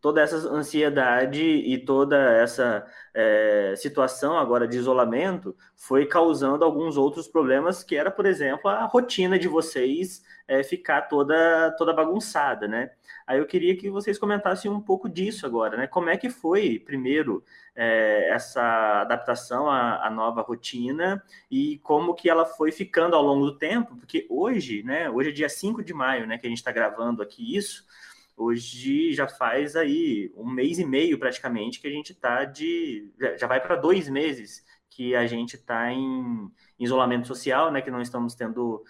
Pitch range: 125-185 Hz